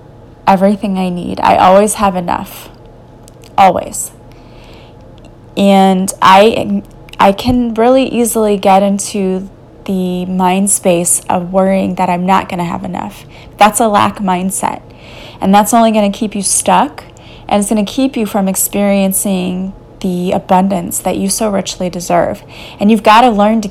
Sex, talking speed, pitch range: female, 155 wpm, 185-220 Hz